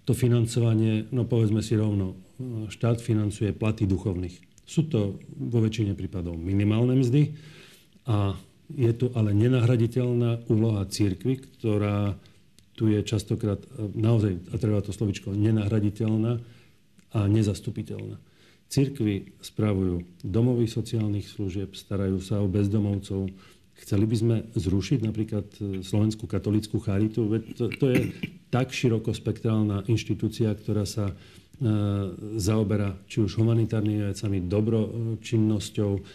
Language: Slovak